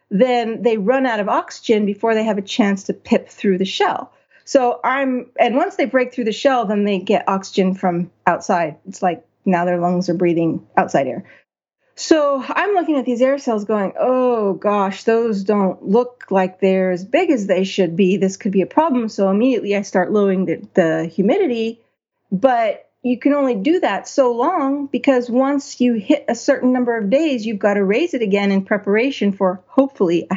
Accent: American